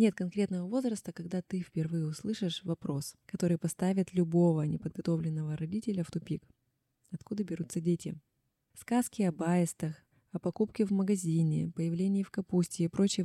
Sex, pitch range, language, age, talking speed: female, 160-190 Hz, Russian, 20-39, 135 wpm